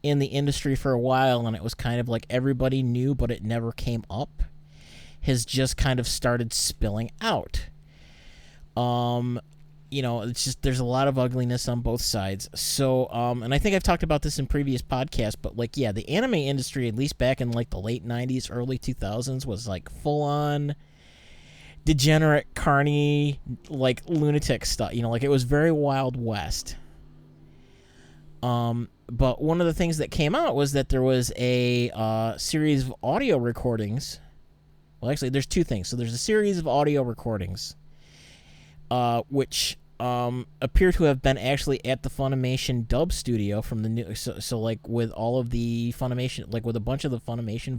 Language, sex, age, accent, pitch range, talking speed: English, male, 30-49, American, 115-140 Hz, 185 wpm